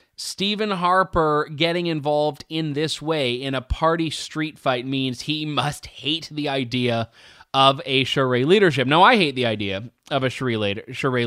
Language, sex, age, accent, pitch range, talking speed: English, male, 20-39, American, 120-160 Hz, 160 wpm